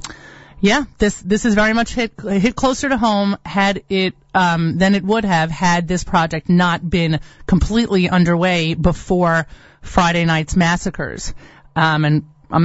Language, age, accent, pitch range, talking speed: English, 30-49, American, 170-220 Hz, 150 wpm